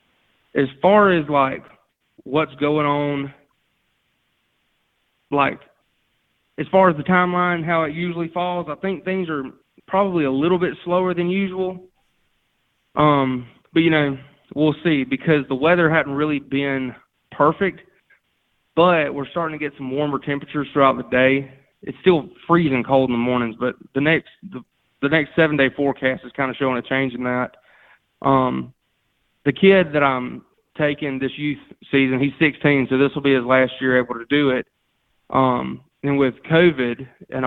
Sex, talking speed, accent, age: male, 165 wpm, American, 20-39